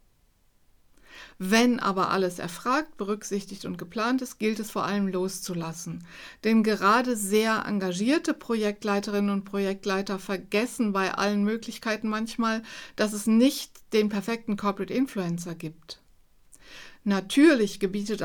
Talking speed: 115 wpm